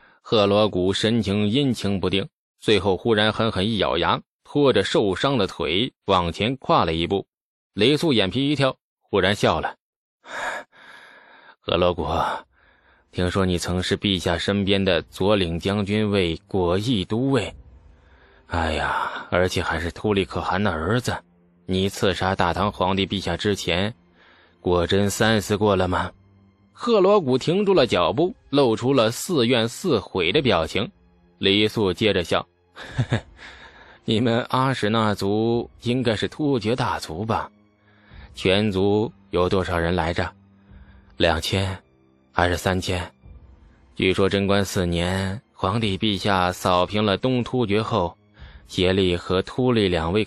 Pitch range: 90-110 Hz